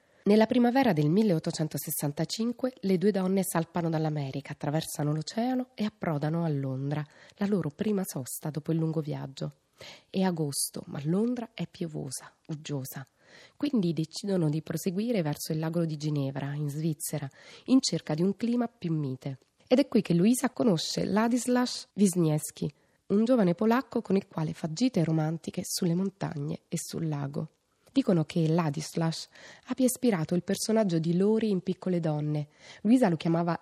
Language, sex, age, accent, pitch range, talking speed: Italian, female, 20-39, native, 155-205 Hz, 150 wpm